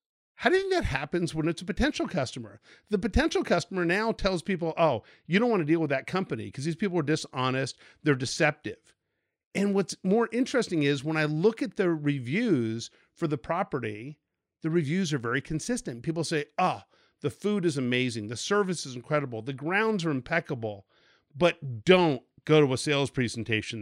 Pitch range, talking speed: 145-210 Hz, 185 wpm